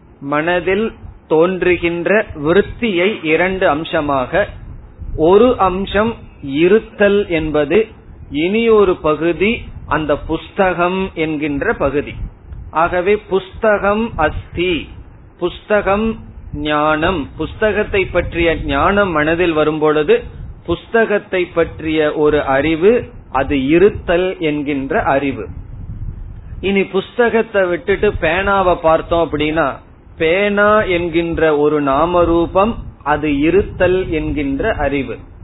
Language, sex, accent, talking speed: Tamil, male, native, 80 wpm